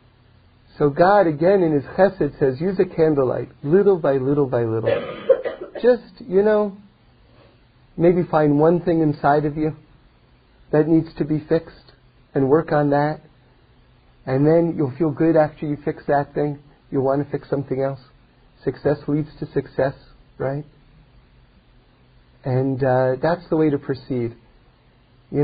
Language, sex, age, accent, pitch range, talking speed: English, male, 40-59, American, 135-175 Hz, 150 wpm